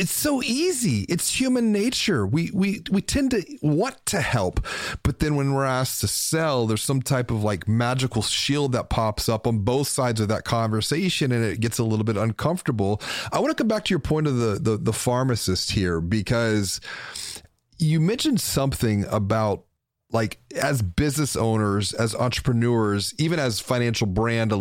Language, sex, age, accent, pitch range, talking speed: English, male, 30-49, American, 105-145 Hz, 180 wpm